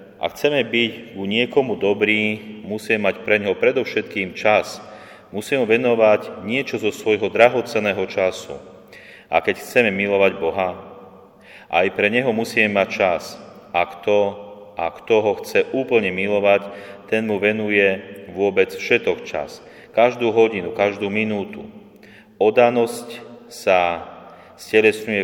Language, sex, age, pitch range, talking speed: Slovak, male, 30-49, 95-110 Hz, 120 wpm